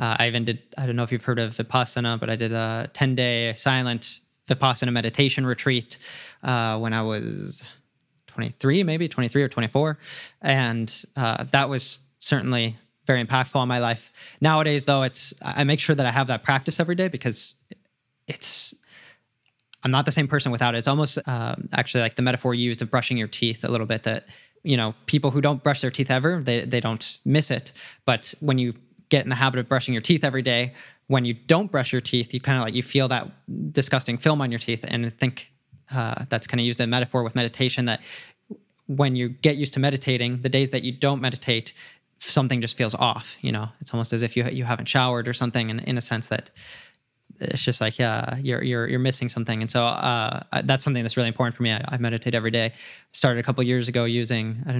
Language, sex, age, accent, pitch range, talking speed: English, male, 20-39, American, 120-135 Hz, 220 wpm